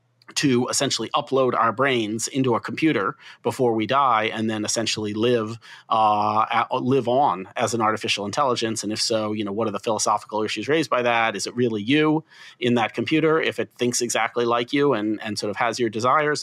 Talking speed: 205 wpm